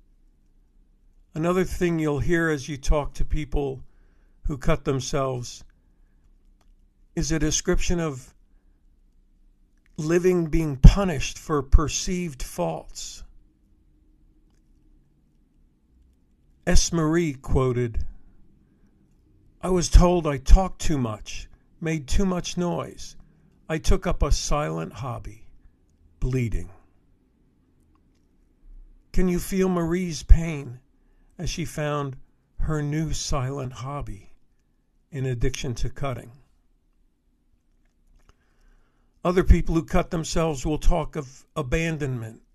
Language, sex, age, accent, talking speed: English, male, 50-69, American, 95 wpm